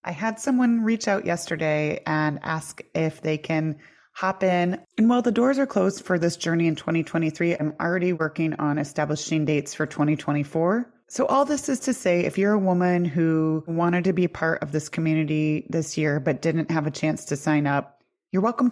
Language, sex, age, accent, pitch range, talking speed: English, female, 30-49, American, 155-195 Hz, 200 wpm